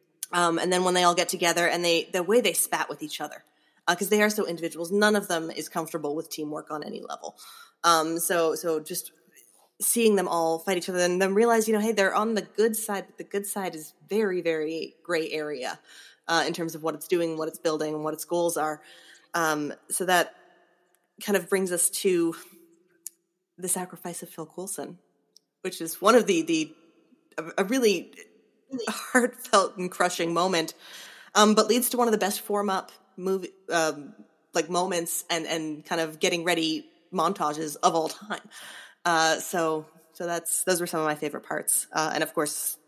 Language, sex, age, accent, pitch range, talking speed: English, female, 20-39, American, 165-205 Hz, 200 wpm